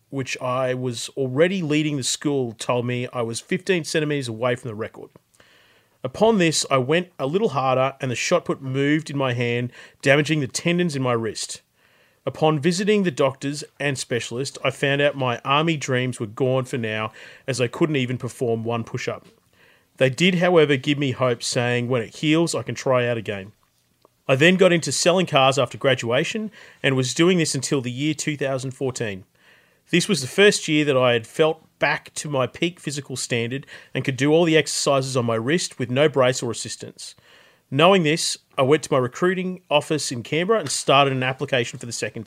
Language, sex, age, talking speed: English, male, 30-49, 195 wpm